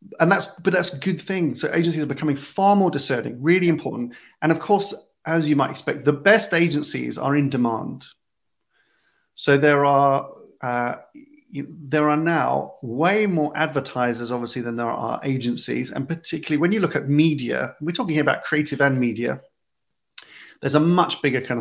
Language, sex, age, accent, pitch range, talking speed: English, male, 30-49, British, 120-155 Hz, 175 wpm